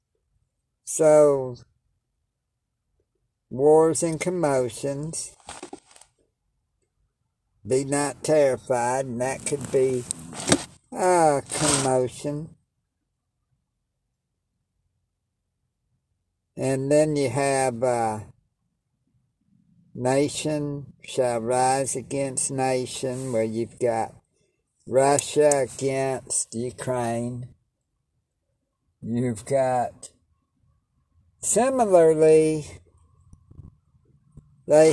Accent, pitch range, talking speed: American, 115-145 Hz, 55 wpm